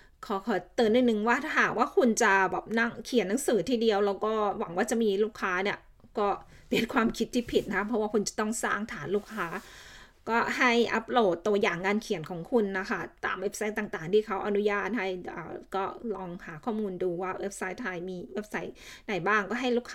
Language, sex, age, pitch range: Thai, female, 20-39, 195-230 Hz